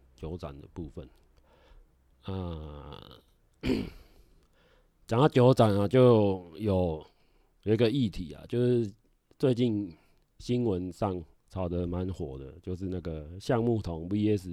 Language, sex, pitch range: Chinese, male, 85-115 Hz